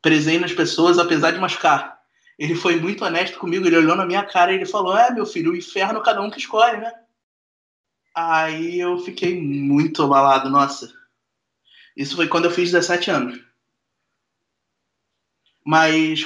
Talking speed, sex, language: 160 wpm, male, Portuguese